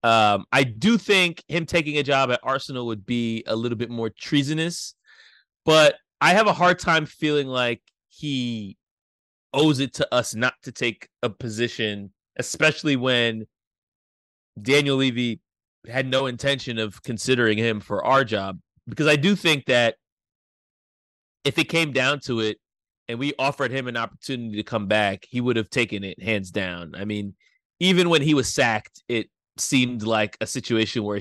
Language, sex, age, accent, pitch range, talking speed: English, male, 30-49, American, 110-145 Hz, 170 wpm